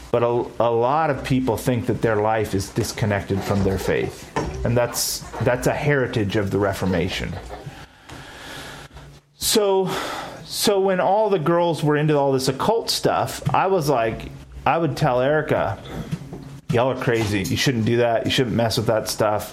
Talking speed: 170 wpm